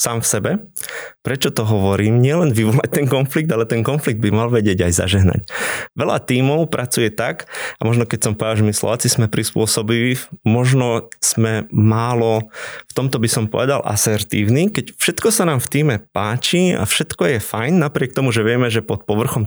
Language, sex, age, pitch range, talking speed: Slovak, male, 20-39, 110-135 Hz, 180 wpm